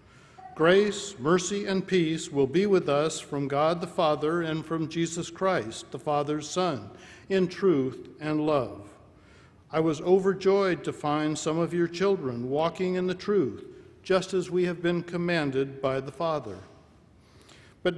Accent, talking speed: American, 155 wpm